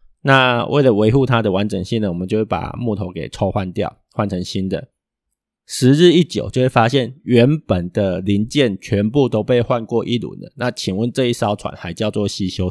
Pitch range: 100-125 Hz